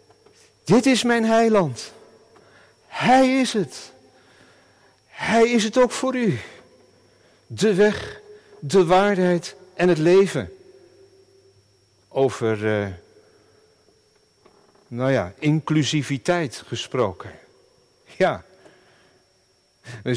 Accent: Dutch